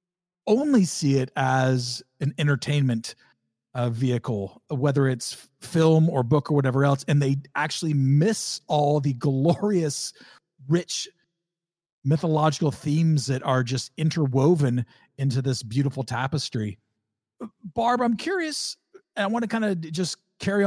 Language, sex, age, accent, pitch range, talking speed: English, male, 40-59, American, 140-185 Hz, 130 wpm